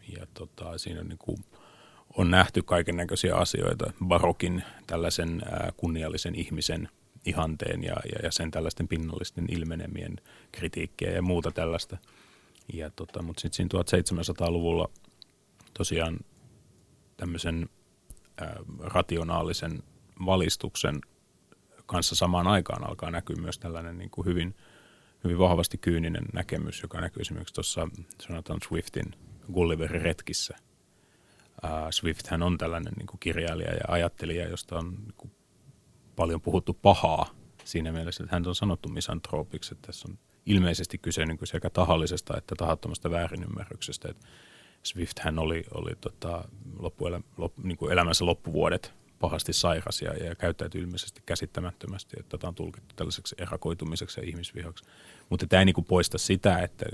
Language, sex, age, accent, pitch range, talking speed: Finnish, male, 30-49, native, 85-100 Hz, 135 wpm